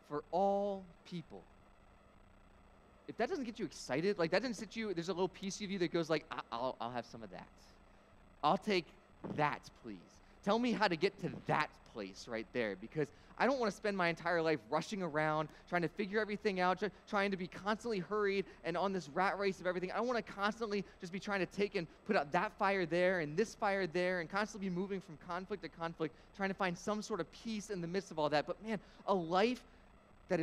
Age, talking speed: 20-39, 230 wpm